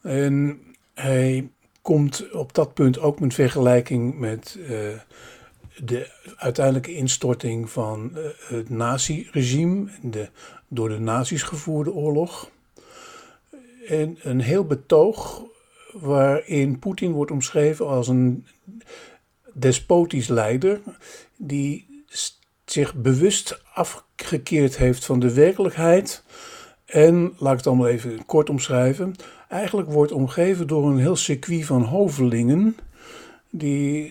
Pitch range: 125-170 Hz